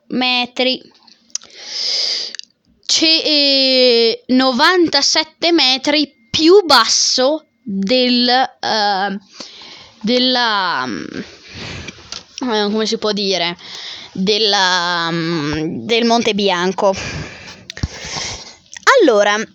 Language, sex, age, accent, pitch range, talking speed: Italian, female, 20-39, native, 250-335 Hz, 60 wpm